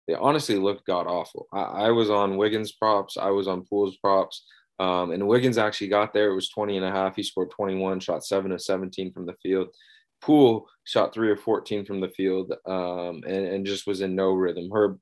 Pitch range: 95-110 Hz